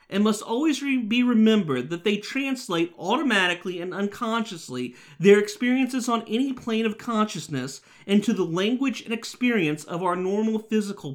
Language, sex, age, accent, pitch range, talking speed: English, male, 40-59, American, 155-230 Hz, 145 wpm